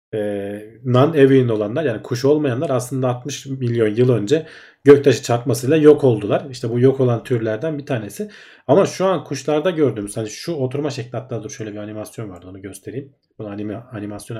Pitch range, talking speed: 110-145 Hz, 170 wpm